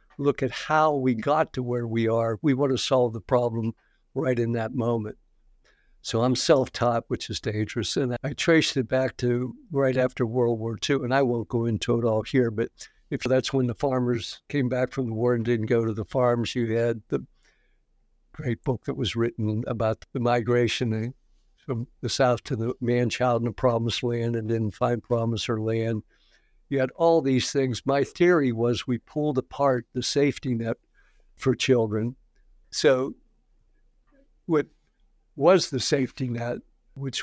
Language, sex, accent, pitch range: English, male, American, 115-130 Hz